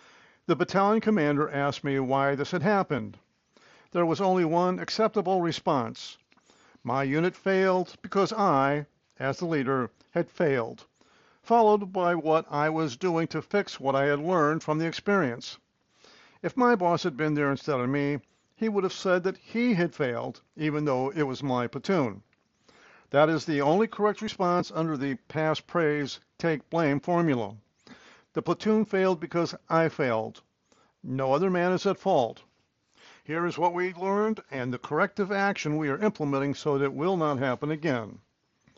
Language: English